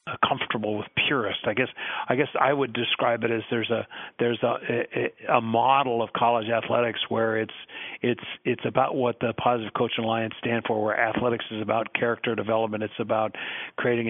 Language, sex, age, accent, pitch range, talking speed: English, male, 50-69, American, 110-120 Hz, 185 wpm